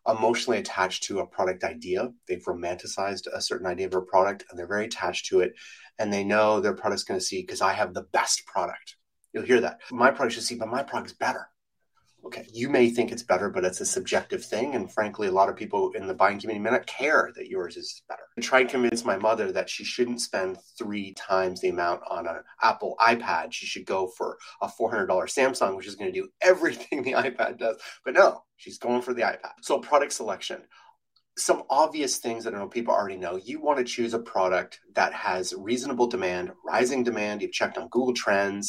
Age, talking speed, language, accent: 30-49, 225 wpm, English, American